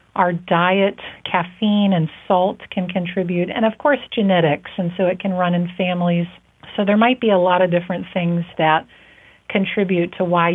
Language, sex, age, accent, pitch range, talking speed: English, female, 40-59, American, 180-205 Hz, 175 wpm